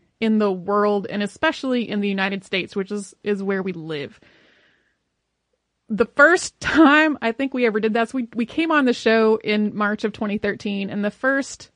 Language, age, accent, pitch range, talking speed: English, 30-49, American, 205-255 Hz, 195 wpm